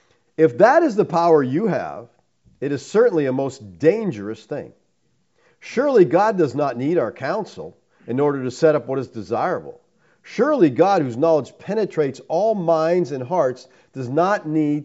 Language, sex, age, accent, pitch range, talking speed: English, male, 50-69, American, 145-215 Hz, 165 wpm